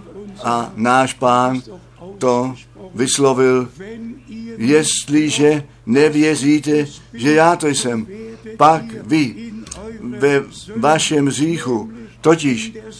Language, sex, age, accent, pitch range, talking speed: Czech, male, 60-79, native, 125-165 Hz, 80 wpm